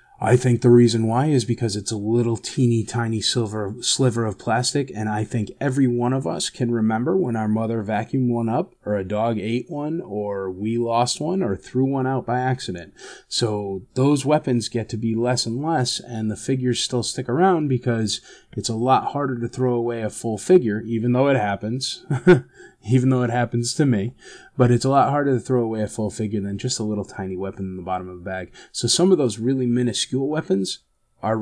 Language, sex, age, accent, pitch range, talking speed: English, male, 20-39, American, 115-155 Hz, 215 wpm